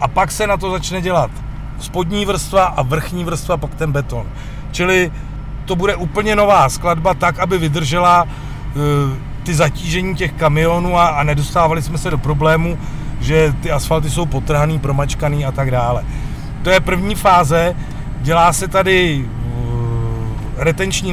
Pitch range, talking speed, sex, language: 145-170 Hz, 145 wpm, male, Czech